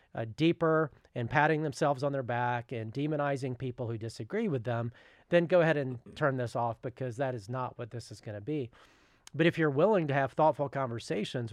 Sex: male